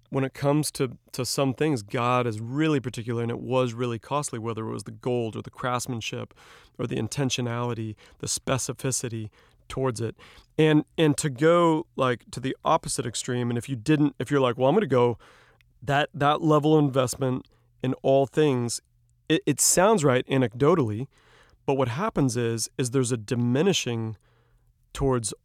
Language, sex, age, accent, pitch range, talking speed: English, male, 40-59, American, 120-135 Hz, 170 wpm